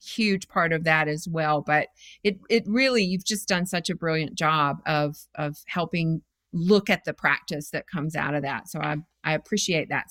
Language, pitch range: English, 165-205 Hz